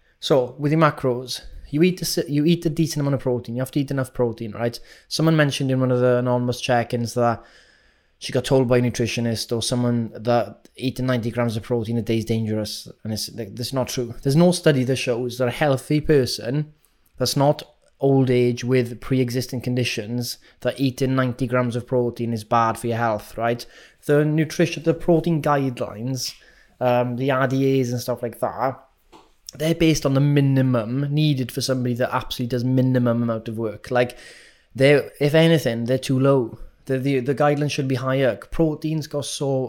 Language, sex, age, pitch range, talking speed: English, male, 20-39, 120-145 Hz, 190 wpm